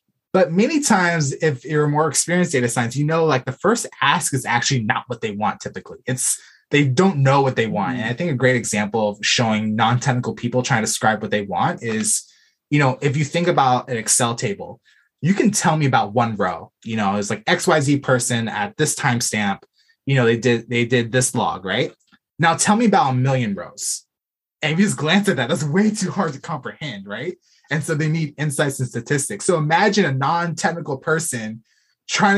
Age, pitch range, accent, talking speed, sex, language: 20-39, 120-175 Hz, American, 215 wpm, male, English